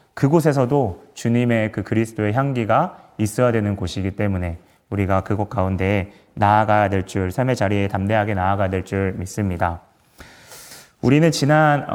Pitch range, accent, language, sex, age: 105-135 Hz, native, Korean, male, 30-49